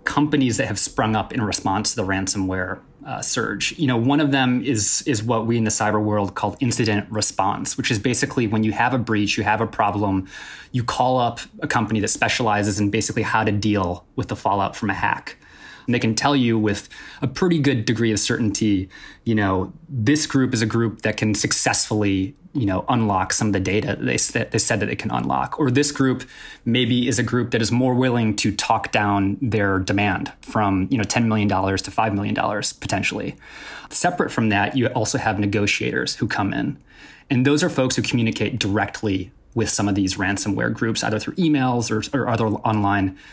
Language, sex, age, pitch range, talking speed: English, male, 20-39, 105-125 Hz, 210 wpm